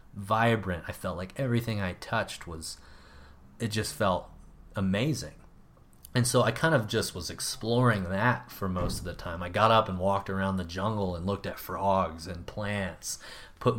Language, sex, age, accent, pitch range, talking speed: English, male, 30-49, American, 90-110 Hz, 180 wpm